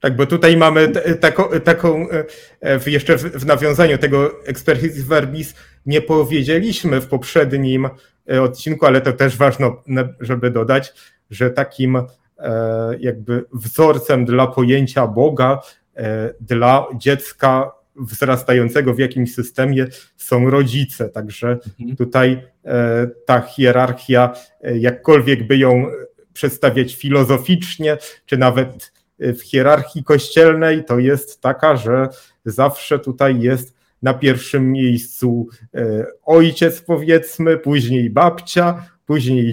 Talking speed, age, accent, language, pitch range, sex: 100 wpm, 30-49, native, Polish, 125-155 Hz, male